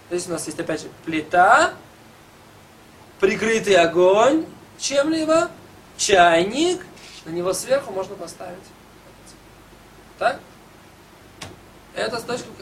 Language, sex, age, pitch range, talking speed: Russian, male, 20-39, 170-225 Hz, 90 wpm